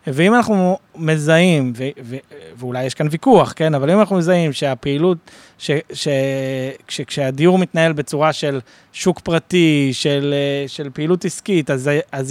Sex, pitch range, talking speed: male, 140-170 Hz, 150 wpm